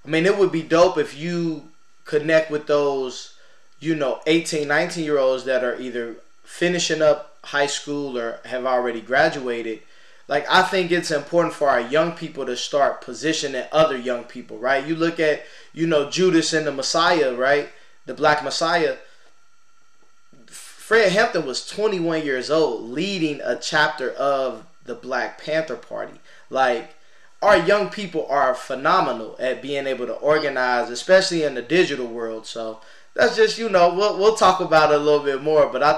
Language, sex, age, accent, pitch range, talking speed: English, male, 20-39, American, 125-170 Hz, 170 wpm